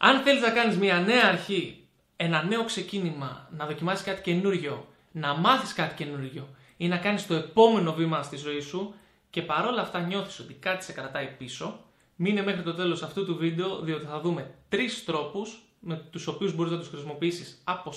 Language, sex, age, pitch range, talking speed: Greek, male, 20-39, 145-190 Hz, 185 wpm